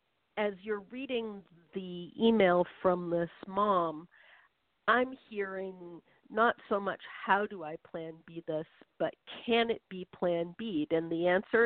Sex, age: female, 50-69